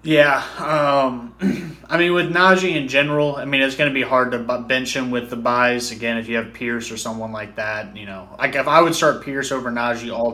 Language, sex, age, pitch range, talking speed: English, male, 20-39, 115-140 Hz, 240 wpm